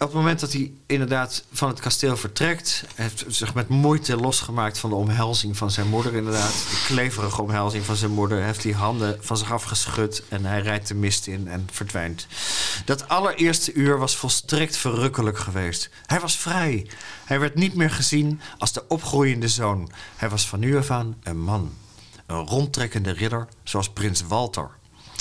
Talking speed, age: 180 wpm, 40-59